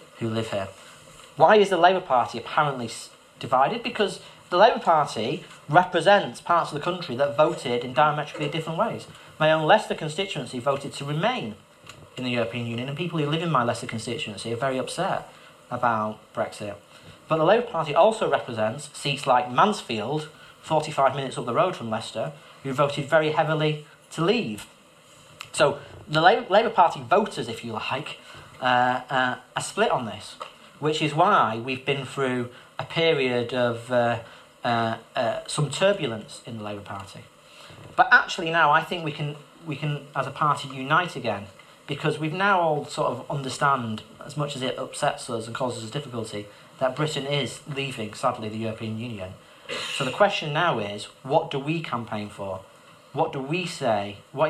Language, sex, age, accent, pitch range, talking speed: English, male, 40-59, British, 115-155 Hz, 170 wpm